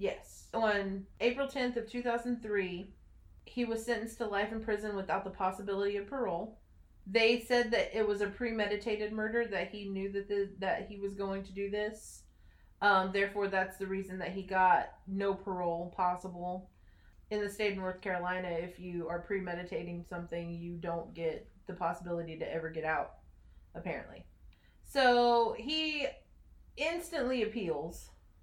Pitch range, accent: 180-240 Hz, American